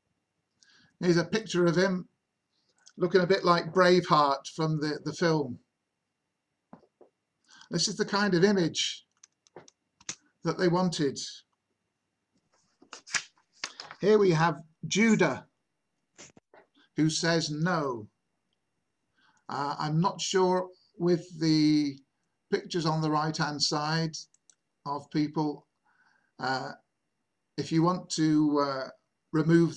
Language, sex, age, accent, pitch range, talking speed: English, male, 50-69, British, 140-175 Hz, 105 wpm